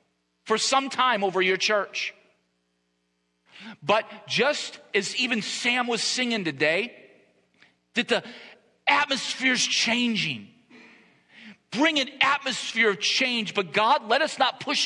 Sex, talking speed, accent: male, 115 wpm, American